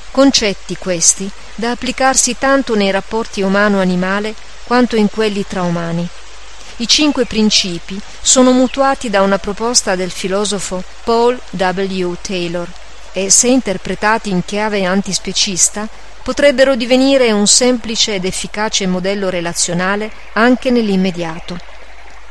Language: Italian